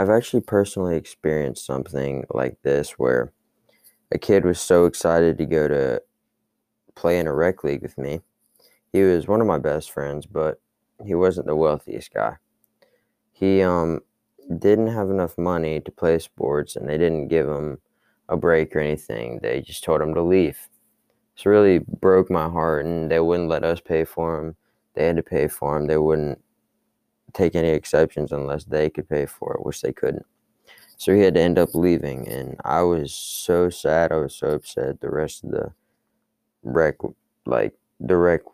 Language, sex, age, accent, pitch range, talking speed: English, male, 20-39, American, 75-90 Hz, 180 wpm